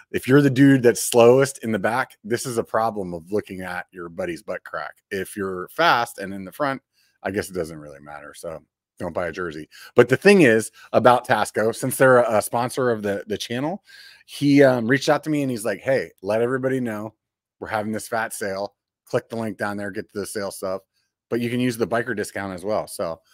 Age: 30-49